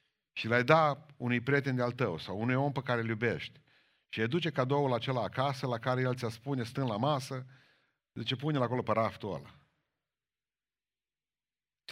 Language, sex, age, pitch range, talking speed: Romanian, male, 50-69, 110-135 Hz, 170 wpm